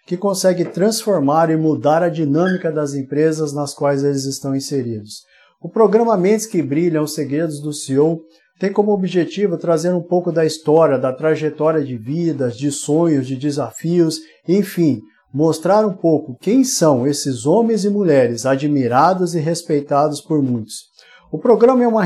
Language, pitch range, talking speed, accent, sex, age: Portuguese, 150-180 Hz, 160 wpm, Brazilian, male, 50-69